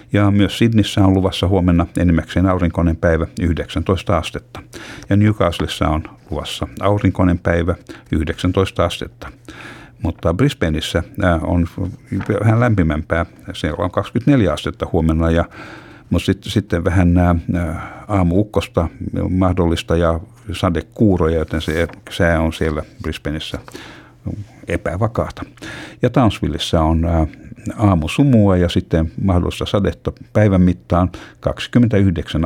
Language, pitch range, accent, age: Finnish, 85-100 Hz, native, 60-79